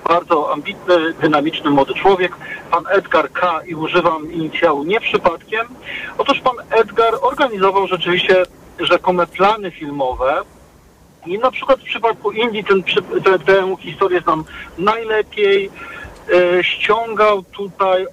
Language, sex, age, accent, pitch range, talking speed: Polish, male, 50-69, native, 160-195 Hz, 120 wpm